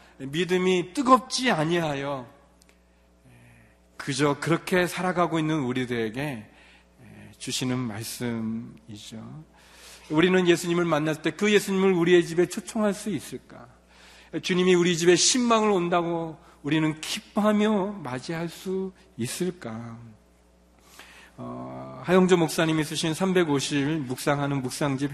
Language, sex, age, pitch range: Korean, male, 40-59, 130-180 Hz